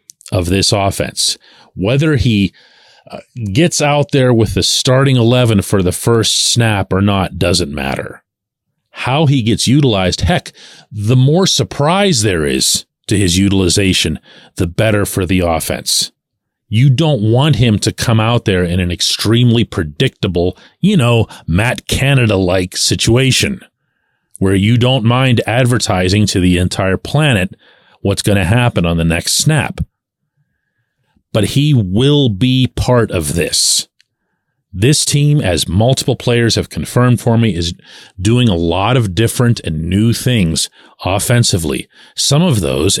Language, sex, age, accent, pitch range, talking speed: English, male, 40-59, American, 95-130 Hz, 145 wpm